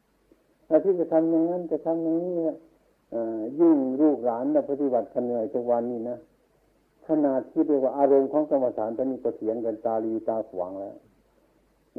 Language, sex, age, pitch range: Thai, male, 60-79, 130-185 Hz